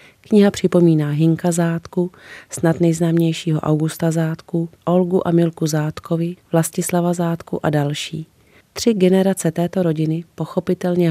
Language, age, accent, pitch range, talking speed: Czech, 30-49, native, 155-180 Hz, 115 wpm